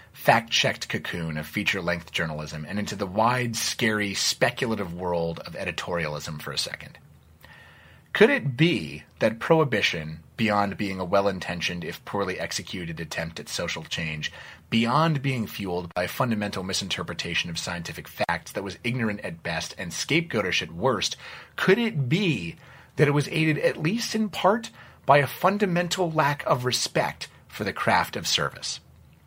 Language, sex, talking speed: English, male, 150 wpm